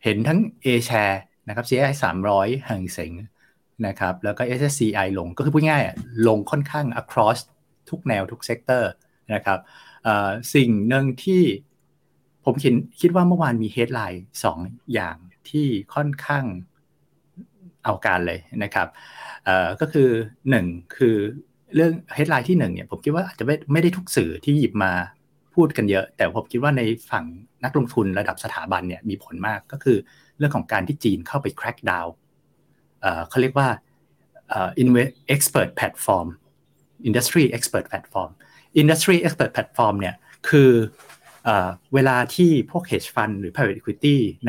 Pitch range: 105-150 Hz